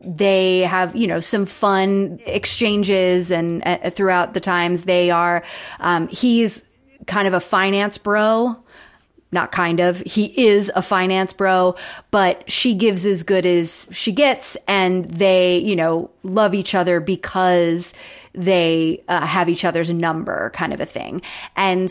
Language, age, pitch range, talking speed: English, 30-49, 175-205 Hz, 155 wpm